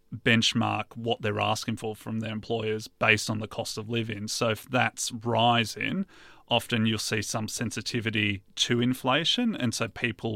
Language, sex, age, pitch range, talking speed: English, male, 30-49, 110-120 Hz, 160 wpm